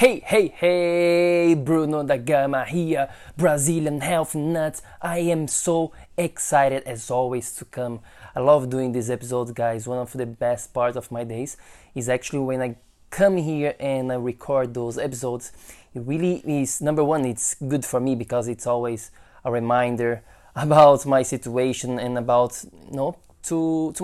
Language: English